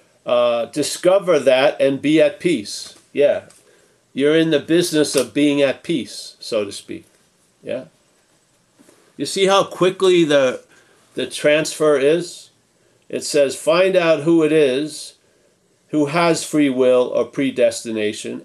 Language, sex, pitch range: English, male, 140-170 Hz